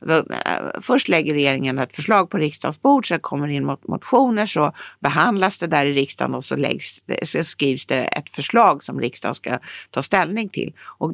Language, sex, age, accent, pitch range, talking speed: English, female, 60-79, Swedish, 140-190 Hz, 180 wpm